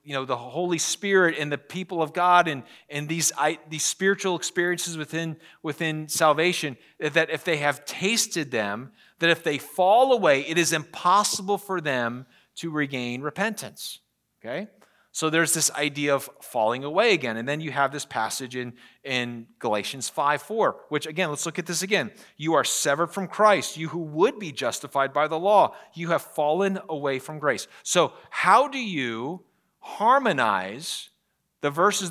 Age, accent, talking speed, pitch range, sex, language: 30-49, American, 170 wpm, 135-170 Hz, male, English